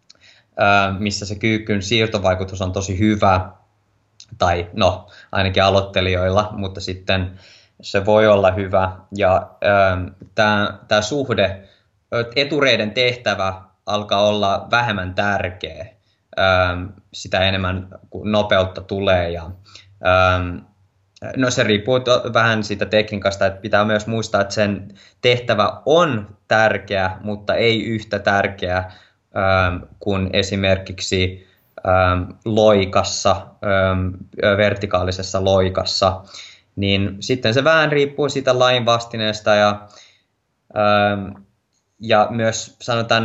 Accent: native